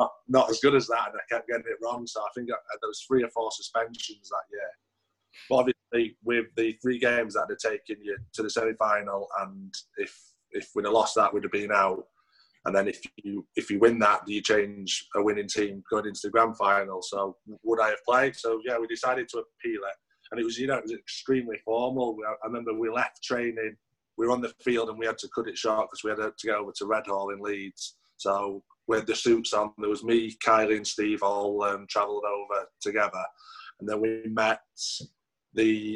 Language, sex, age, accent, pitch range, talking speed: English, male, 20-39, British, 105-125 Hz, 225 wpm